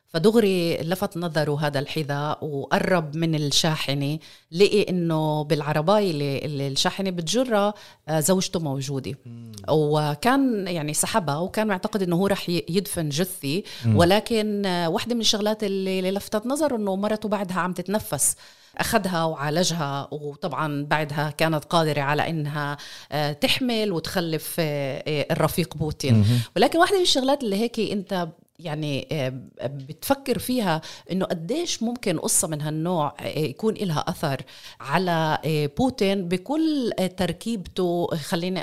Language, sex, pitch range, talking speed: Arabic, female, 150-200 Hz, 115 wpm